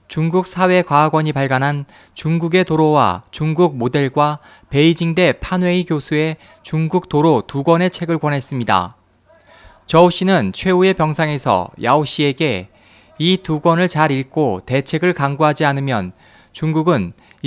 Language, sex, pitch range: Korean, male, 130-175 Hz